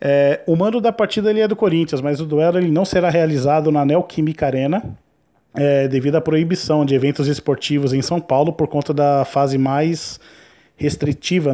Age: 20-39